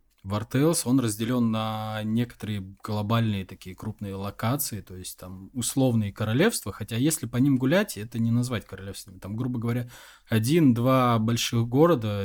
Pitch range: 100-120 Hz